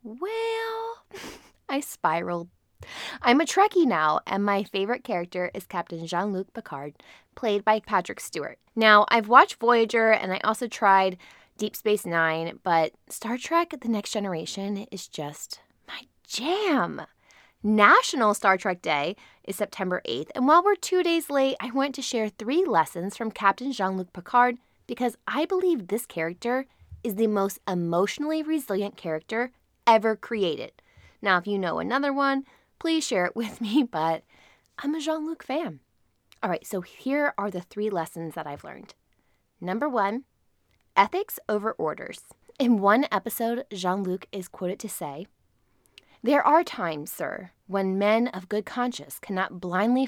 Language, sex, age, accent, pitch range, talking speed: English, female, 20-39, American, 185-265 Hz, 150 wpm